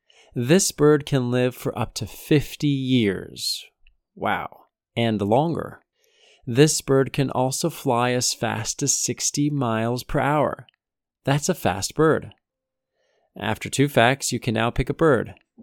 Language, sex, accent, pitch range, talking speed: English, male, American, 110-145 Hz, 140 wpm